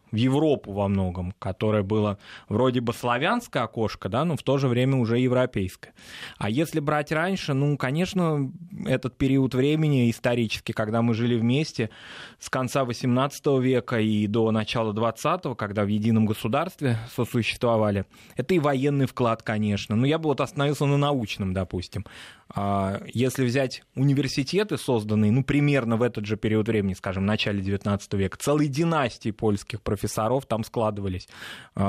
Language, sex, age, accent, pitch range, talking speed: Russian, male, 20-39, native, 110-150 Hz, 150 wpm